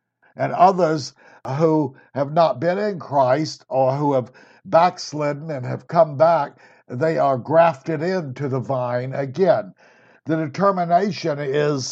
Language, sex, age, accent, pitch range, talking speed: English, male, 60-79, American, 140-170 Hz, 130 wpm